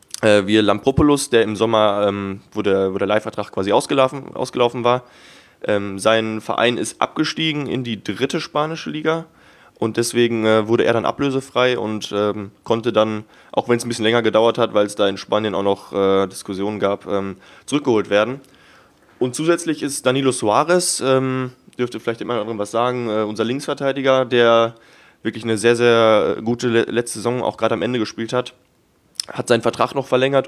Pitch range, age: 105-125 Hz, 20-39